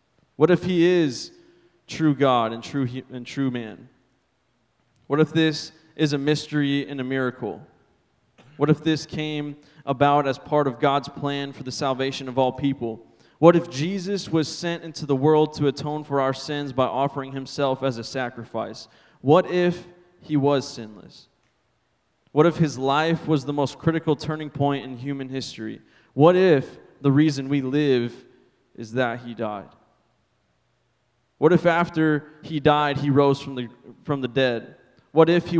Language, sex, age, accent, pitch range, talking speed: English, male, 20-39, American, 130-155 Hz, 165 wpm